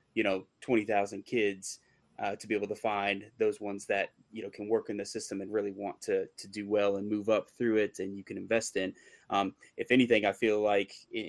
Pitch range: 100-120 Hz